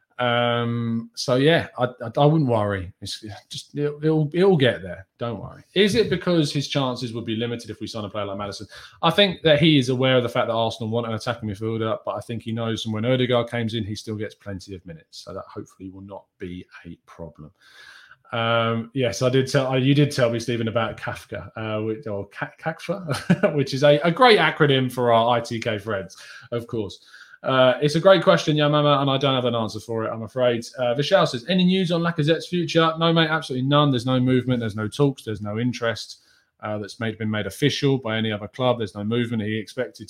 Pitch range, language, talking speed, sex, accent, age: 110-145 Hz, English, 230 wpm, male, British, 20-39